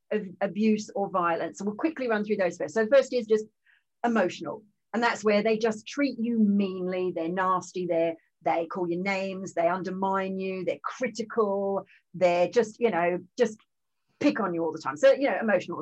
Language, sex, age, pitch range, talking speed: English, female, 40-59, 190-245 Hz, 195 wpm